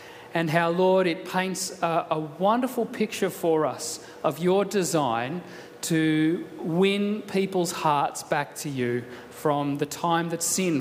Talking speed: 145 wpm